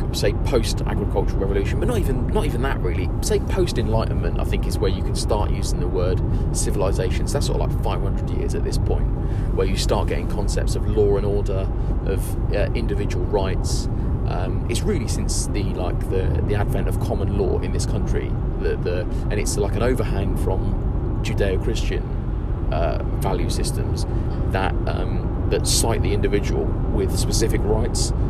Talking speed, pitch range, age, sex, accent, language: 175 wpm, 95-115 Hz, 30-49, male, British, English